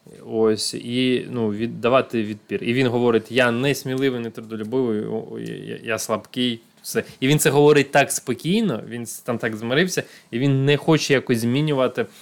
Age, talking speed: 20-39, 165 wpm